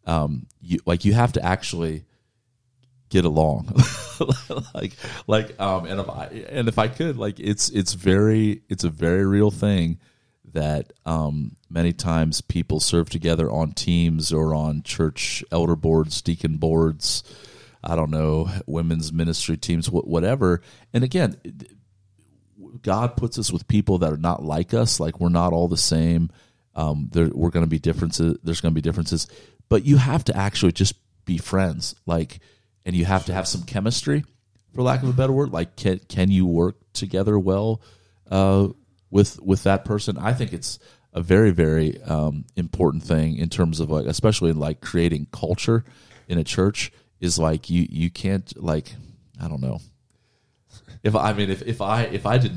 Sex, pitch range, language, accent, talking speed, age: male, 85-110 Hz, English, American, 175 wpm, 40-59